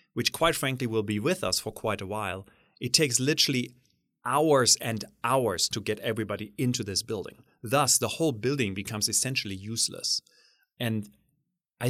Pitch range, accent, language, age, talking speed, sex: 105-140 Hz, German, English, 30-49, 160 wpm, male